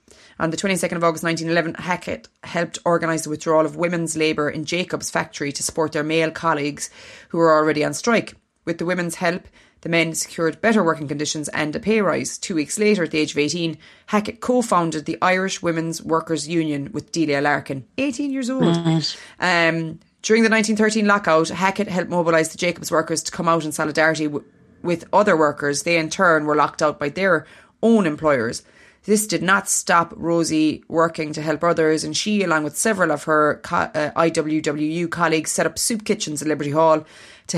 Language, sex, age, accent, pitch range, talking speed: English, female, 30-49, Irish, 155-180 Hz, 185 wpm